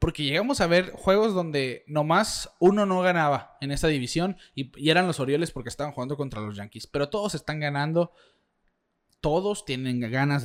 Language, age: Spanish, 30-49